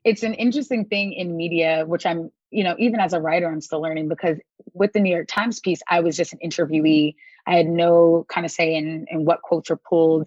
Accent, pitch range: American, 170-200 Hz